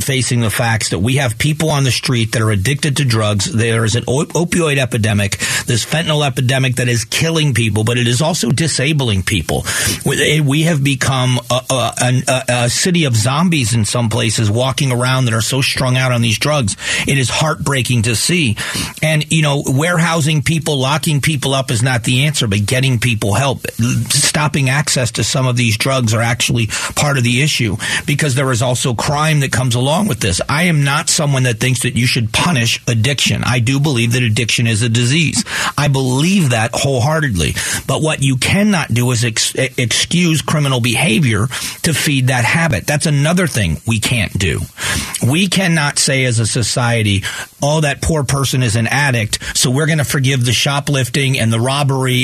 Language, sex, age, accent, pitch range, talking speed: English, male, 40-59, American, 120-150 Hz, 190 wpm